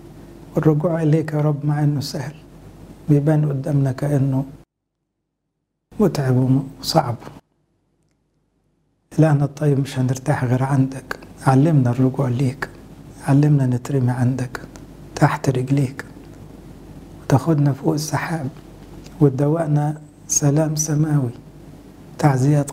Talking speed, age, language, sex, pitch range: 85 wpm, 60-79, English, male, 135-155 Hz